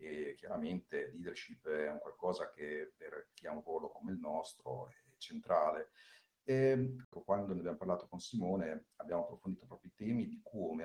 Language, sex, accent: Italian, male, native